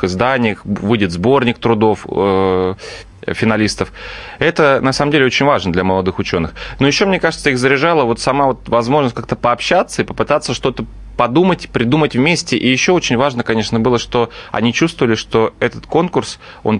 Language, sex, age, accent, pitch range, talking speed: Russian, male, 20-39, native, 95-120 Hz, 165 wpm